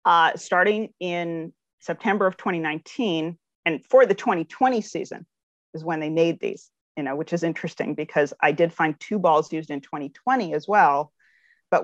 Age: 40-59